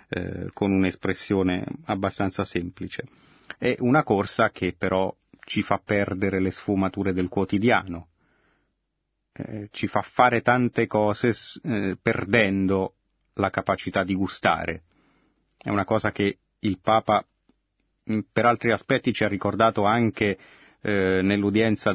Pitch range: 95-110 Hz